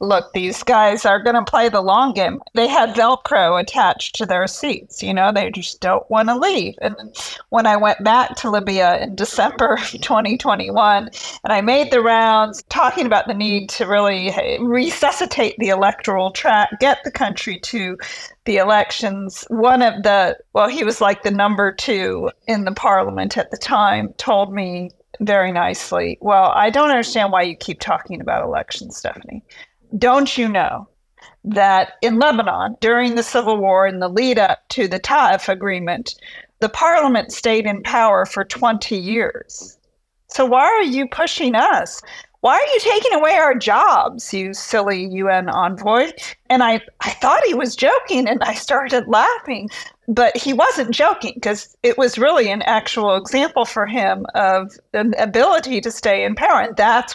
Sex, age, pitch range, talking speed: female, 40-59, 200-255 Hz, 170 wpm